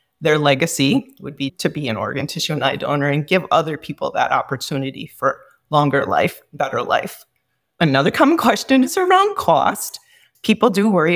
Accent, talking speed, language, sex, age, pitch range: American, 170 wpm, English, female, 30-49, 150-210 Hz